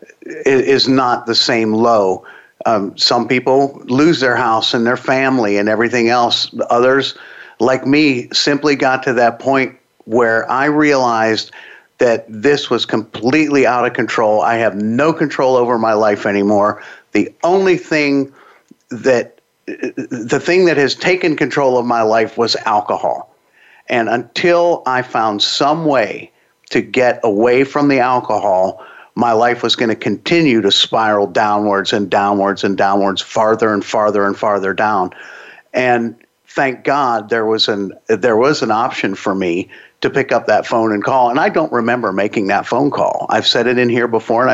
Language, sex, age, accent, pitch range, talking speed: English, male, 50-69, American, 110-135 Hz, 165 wpm